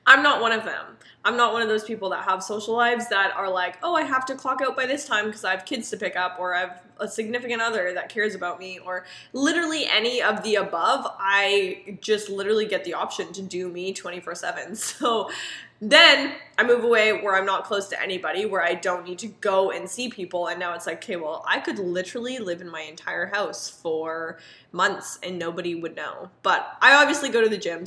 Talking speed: 230 wpm